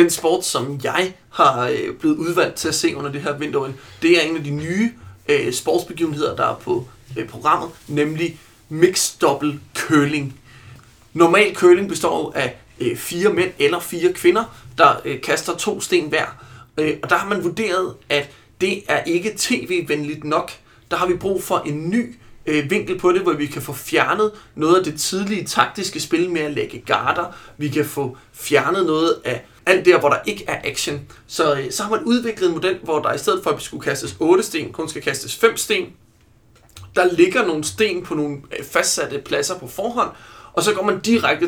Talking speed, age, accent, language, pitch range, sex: 190 wpm, 30-49, native, Danish, 150-205 Hz, male